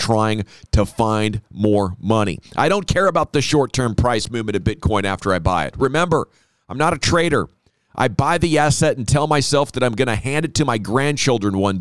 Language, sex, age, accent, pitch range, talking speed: English, male, 40-59, American, 100-125 Hz, 210 wpm